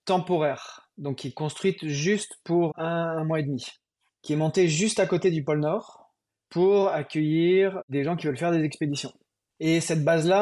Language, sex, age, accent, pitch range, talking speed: French, male, 20-39, French, 140-165 Hz, 190 wpm